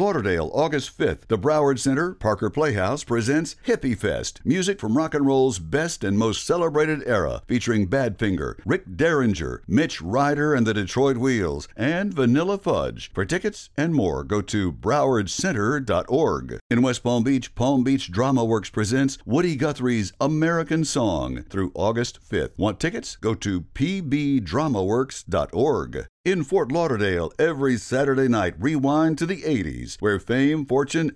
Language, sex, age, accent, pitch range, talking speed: English, male, 60-79, American, 110-150 Hz, 145 wpm